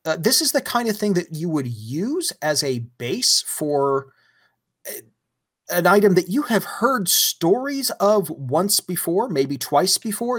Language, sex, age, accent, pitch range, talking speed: English, male, 30-49, American, 125-185 Hz, 160 wpm